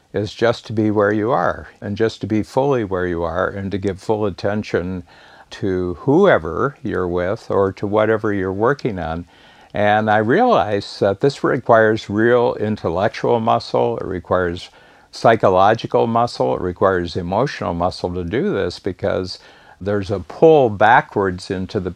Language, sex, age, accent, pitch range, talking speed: English, male, 60-79, American, 95-115 Hz, 155 wpm